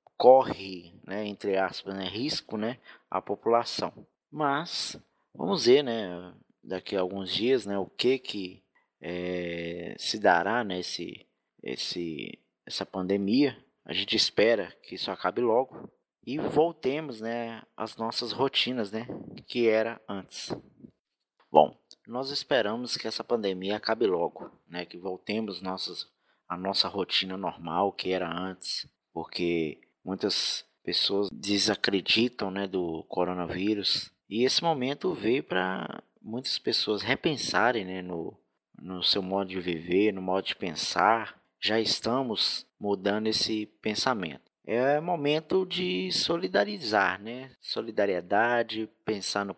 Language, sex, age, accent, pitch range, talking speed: Portuguese, male, 20-39, Brazilian, 95-115 Hz, 125 wpm